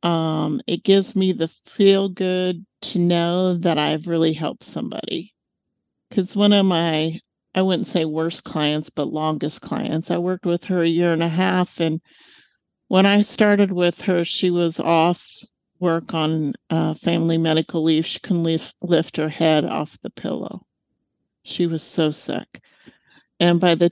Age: 50-69